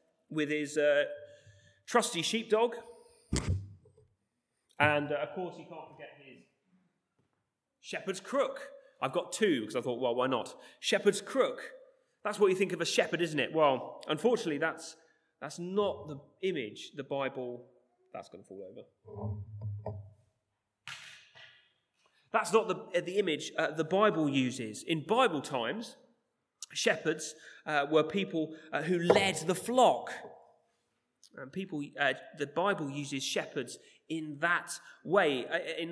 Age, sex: 30-49, male